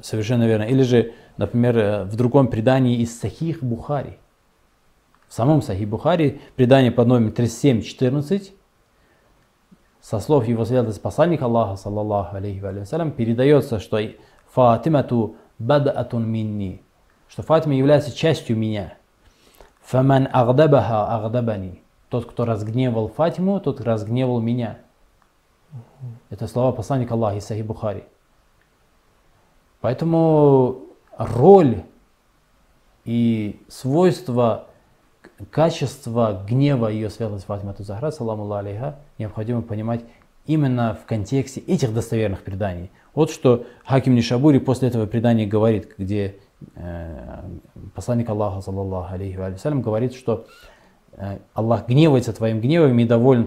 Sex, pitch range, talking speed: male, 105-130 Hz, 115 wpm